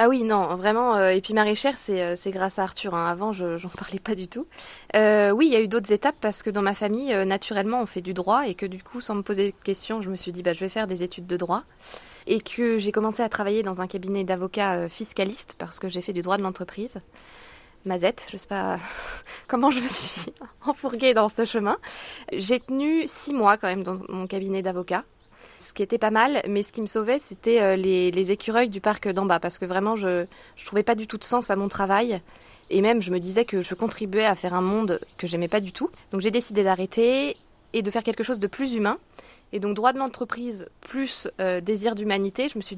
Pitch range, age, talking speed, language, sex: 190-230 Hz, 20-39, 250 wpm, French, female